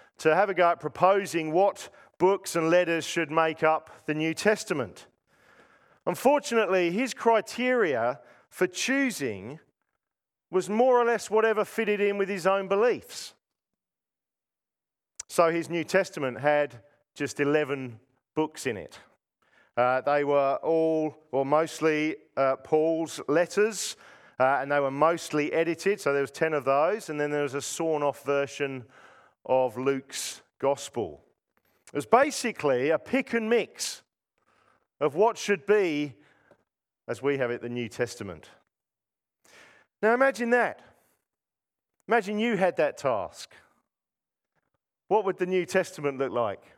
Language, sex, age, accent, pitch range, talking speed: English, male, 40-59, Australian, 145-205 Hz, 135 wpm